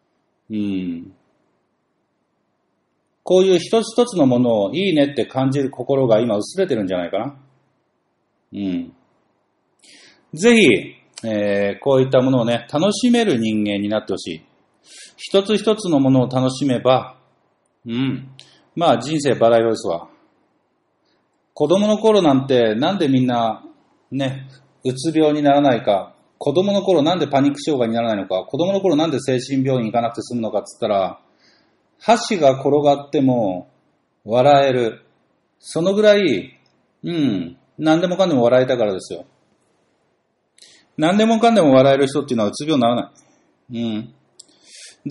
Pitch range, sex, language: 115-175 Hz, male, Japanese